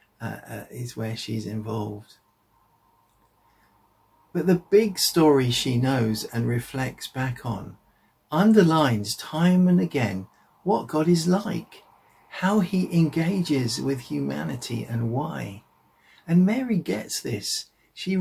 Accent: British